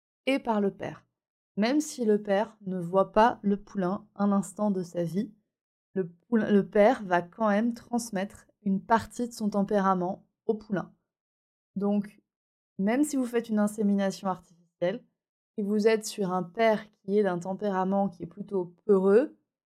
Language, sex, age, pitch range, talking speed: French, female, 20-39, 190-225 Hz, 165 wpm